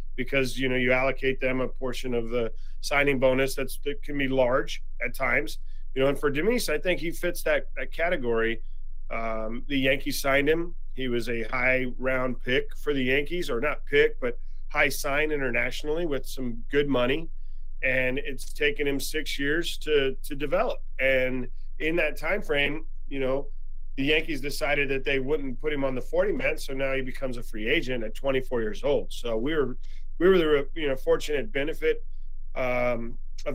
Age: 40-59